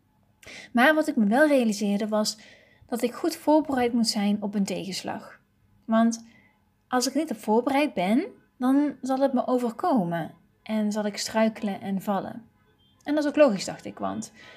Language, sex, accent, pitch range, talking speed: Dutch, female, Dutch, 205-265 Hz, 175 wpm